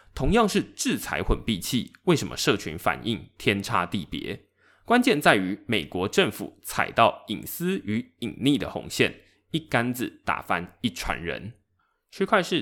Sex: male